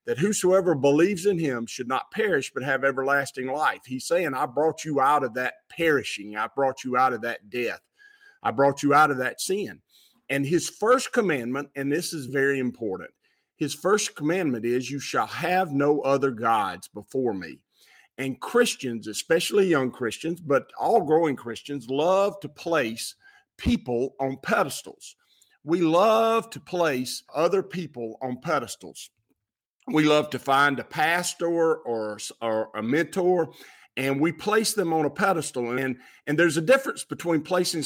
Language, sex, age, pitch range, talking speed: English, male, 50-69, 130-165 Hz, 165 wpm